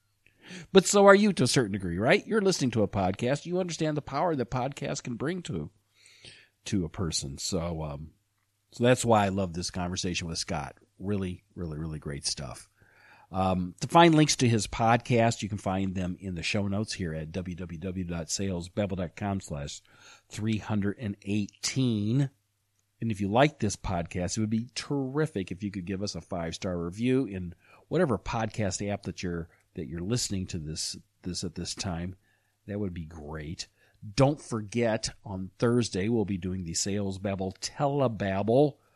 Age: 40-59